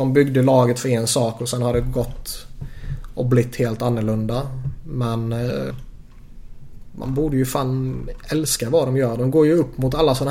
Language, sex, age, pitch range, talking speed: Swedish, male, 20-39, 120-130 Hz, 180 wpm